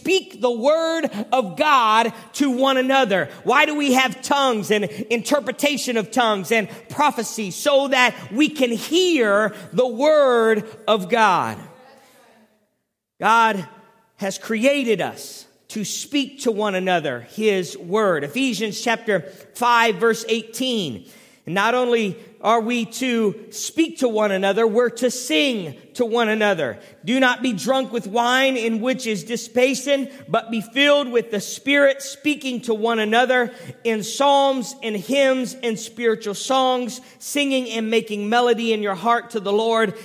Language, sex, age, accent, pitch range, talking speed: English, male, 40-59, American, 205-255 Hz, 145 wpm